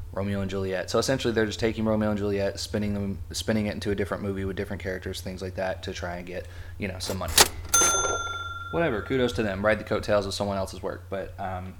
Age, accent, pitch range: 20-39, American, 90-105 Hz